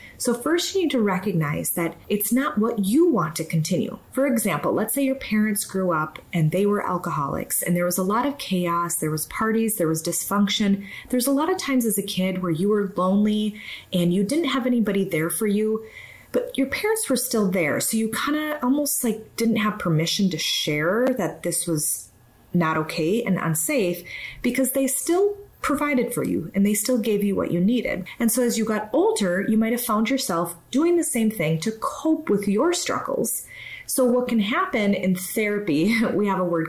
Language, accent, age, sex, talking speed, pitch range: English, American, 30-49, female, 210 wpm, 175-245 Hz